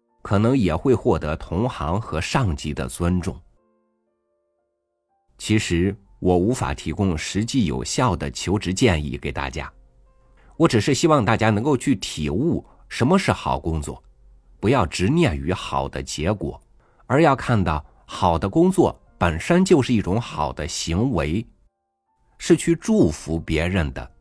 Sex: male